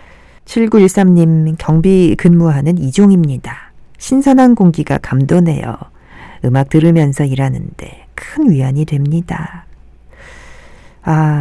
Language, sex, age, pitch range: Korean, female, 40-59, 140-200 Hz